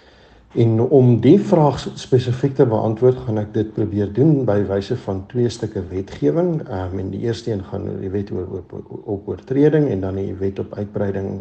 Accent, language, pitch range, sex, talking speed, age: Dutch, English, 100-120 Hz, male, 180 wpm, 60-79